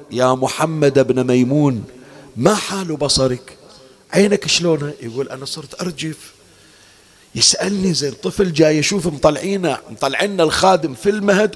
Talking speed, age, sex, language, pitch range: 120 wpm, 50-69, male, Arabic, 120-195 Hz